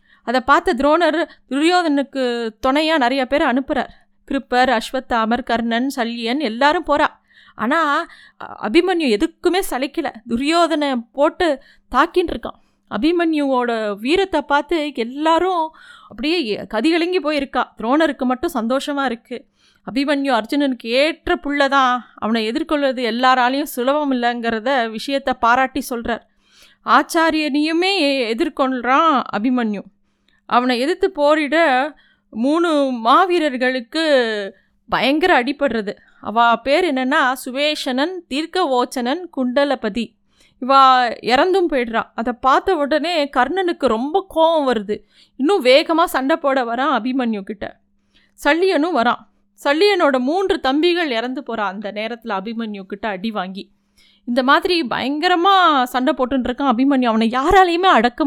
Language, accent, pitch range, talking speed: Tamil, native, 240-320 Hz, 105 wpm